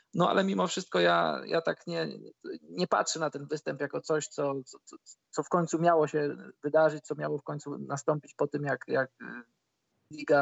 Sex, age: male, 20-39